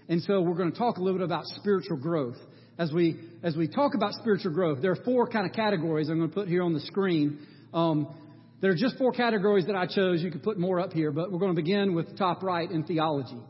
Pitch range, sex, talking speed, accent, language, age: 155-210 Hz, male, 260 wpm, American, English, 40-59